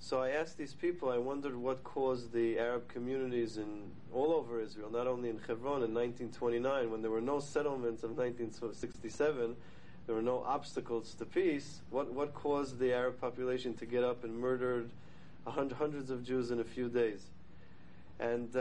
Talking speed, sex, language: 180 wpm, male, English